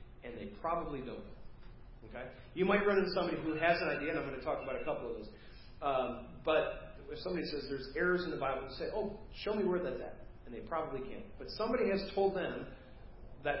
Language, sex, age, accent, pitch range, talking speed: English, male, 40-59, American, 125-175 Hz, 230 wpm